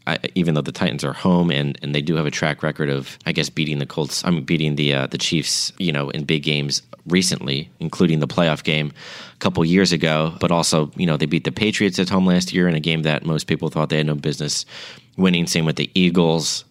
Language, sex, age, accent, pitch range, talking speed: English, male, 30-49, American, 75-85 Hz, 250 wpm